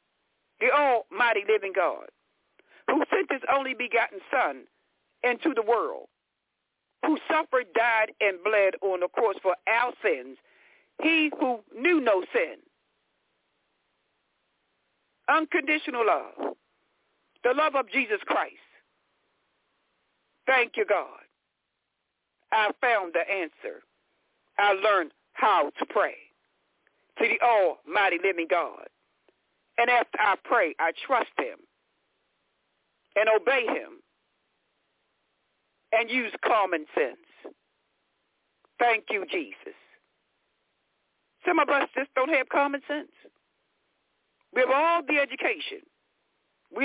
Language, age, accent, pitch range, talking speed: English, 60-79, American, 240-355 Hz, 110 wpm